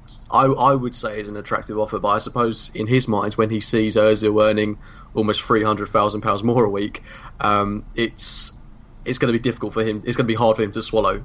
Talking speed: 225 wpm